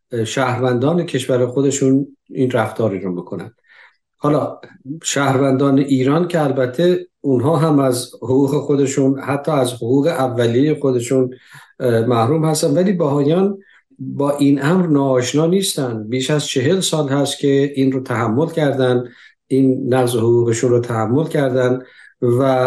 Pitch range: 120-140 Hz